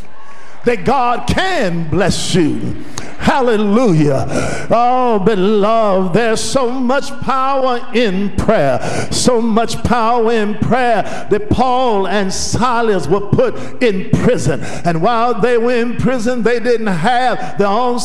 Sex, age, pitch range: male, 50-69, 200-245 Hz